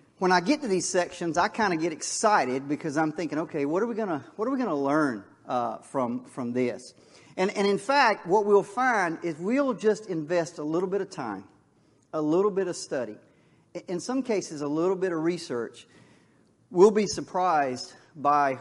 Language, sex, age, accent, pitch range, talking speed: English, male, 40-59, American, 135-180 Hz, 195 wpm